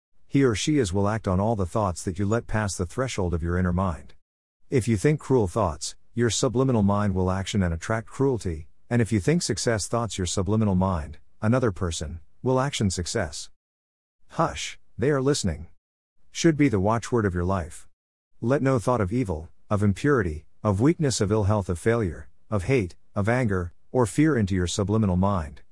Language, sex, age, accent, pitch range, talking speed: English, male, 50-69, American, 90-115 Hz, 190 wpm